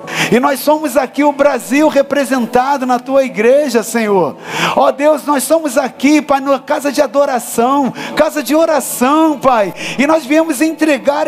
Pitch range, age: 255-305 Hz, 50-69